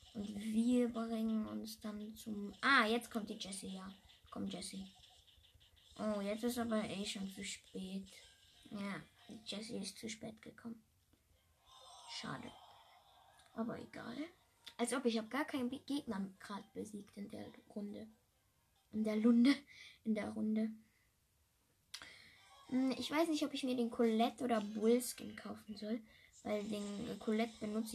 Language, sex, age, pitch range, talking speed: English, female, 20-39, 190-235 Hz, 140 wpm